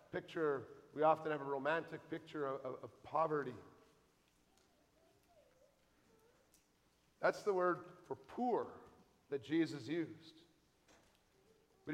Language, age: English, 50-69